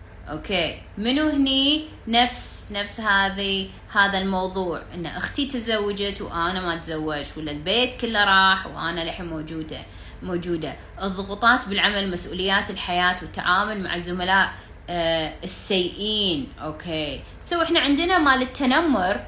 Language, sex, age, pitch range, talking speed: Arabic, female, 20-39, 175-220 Hz, 110 wpm